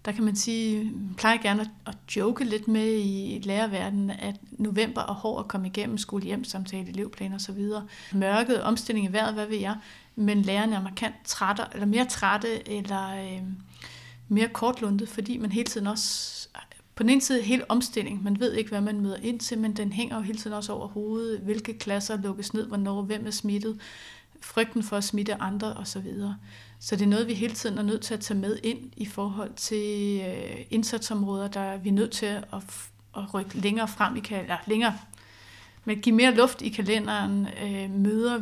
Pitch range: 200-220 Hz